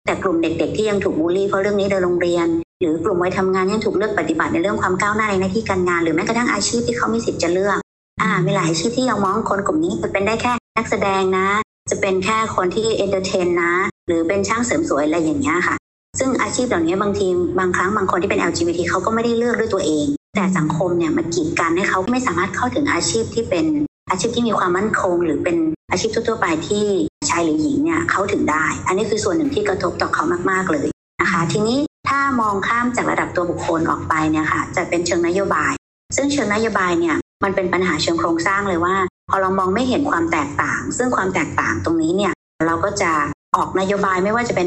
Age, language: 60-79, Thai